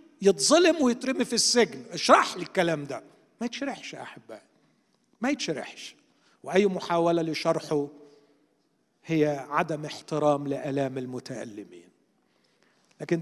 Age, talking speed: 50-69, 100 wpm